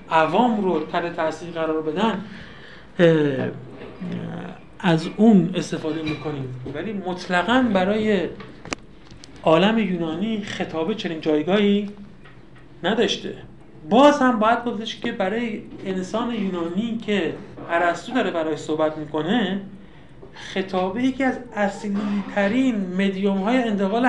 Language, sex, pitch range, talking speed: Persian, male, 170-220 Hz, 100 wpm